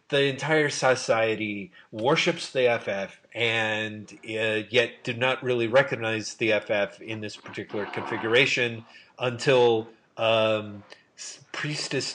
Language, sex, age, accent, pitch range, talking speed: English, male, 30-49, American, 110-130 Hz, 110 wpm